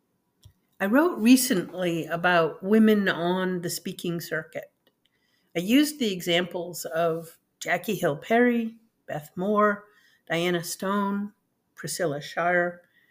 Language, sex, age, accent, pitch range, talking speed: English, female, 50-69, American, 175-245 Hz, 105 wpm